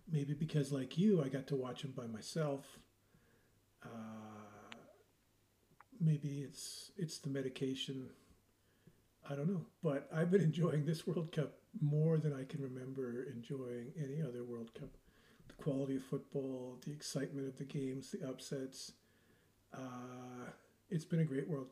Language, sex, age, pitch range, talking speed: English, male, 40-59, 130-155 Hz, 150 wpm